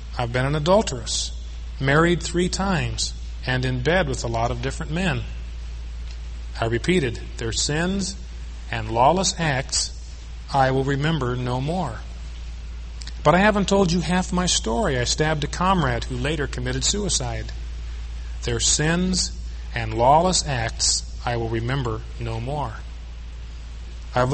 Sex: male